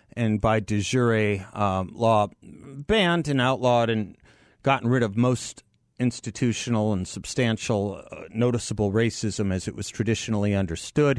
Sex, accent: male, American